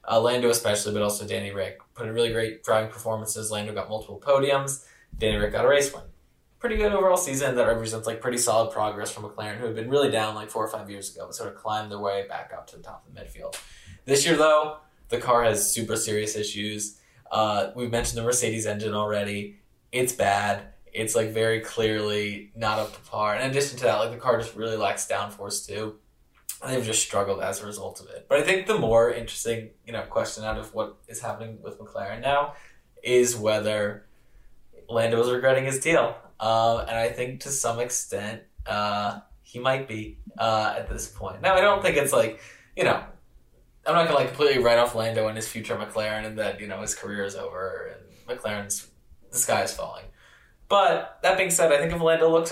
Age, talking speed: 10-29, 215 wpm